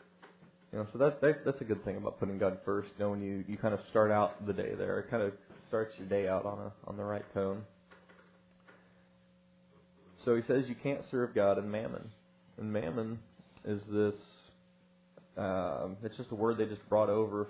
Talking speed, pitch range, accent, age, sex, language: 195 wpm, 100-115 Hz, American, 30-49, male, English